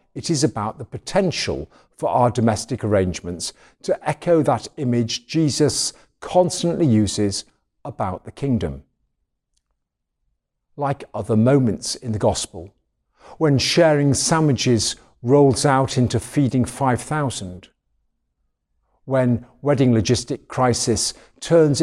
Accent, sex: British, male